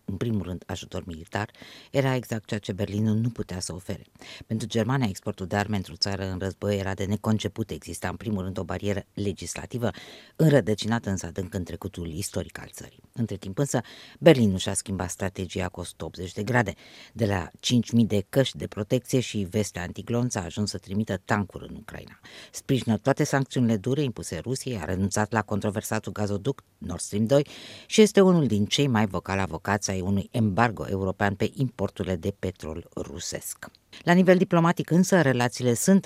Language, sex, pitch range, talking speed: Romanian, female, 95-120 Hz, 175 wpm